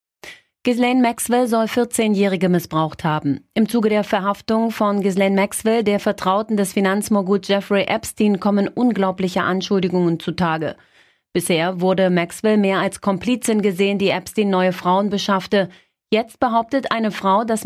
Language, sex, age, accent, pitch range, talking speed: German, female, 30-49, German, 190-220 Hz, 135 wpm